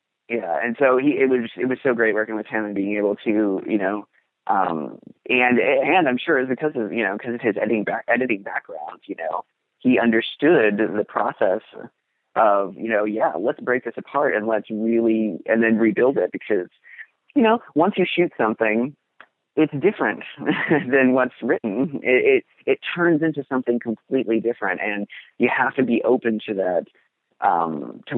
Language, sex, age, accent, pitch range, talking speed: English, male, 30-49, American, 110-130 Hz, 185 wpm